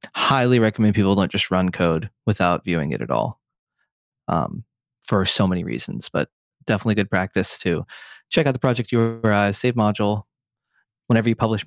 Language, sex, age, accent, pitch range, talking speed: English, male, 30-49, American, 100-120 Hz, 165 wpm